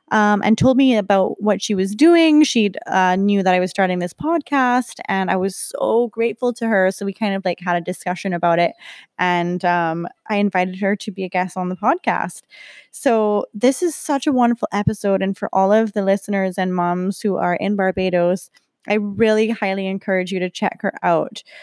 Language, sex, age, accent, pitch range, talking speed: English, female, 20-39, American, 185-220 Hz, 205 wpm